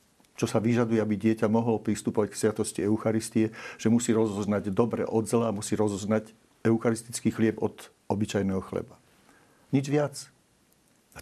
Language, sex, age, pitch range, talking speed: Slovak, male, 50-69, 105-120 Hz, 145 wpm